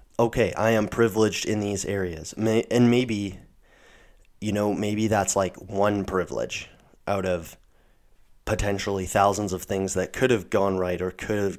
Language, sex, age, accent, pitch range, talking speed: English, male, 30-49, American, 90-110 Hz, 155 wpm